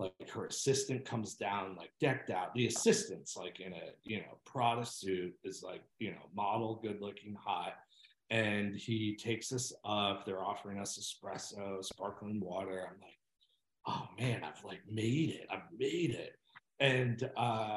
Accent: American